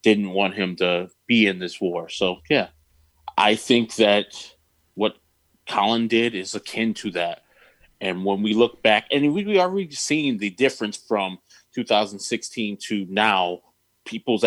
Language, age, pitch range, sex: English, 20-39, 95-120 Hz, male